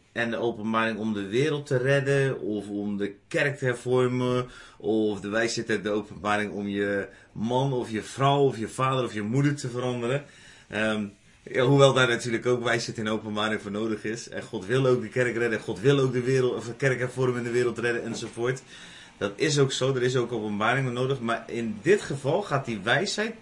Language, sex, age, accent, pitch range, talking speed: Dutch, male, 30-49, Dutch, 105-135 Hz, 215 wpm